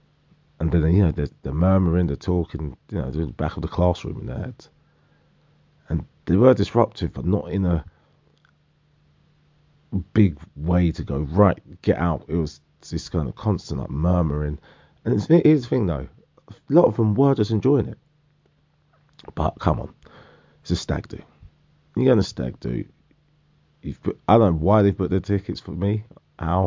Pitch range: 80-110 Hz